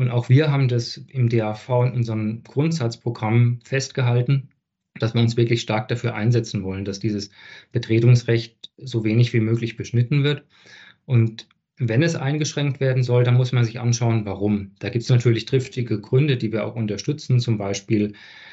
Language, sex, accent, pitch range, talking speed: German, male, German, 110-130 Hz, 170 wpm